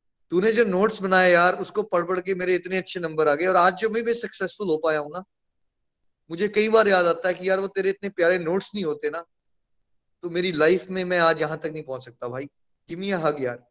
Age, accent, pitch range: 20-39, native, 175-230 Hz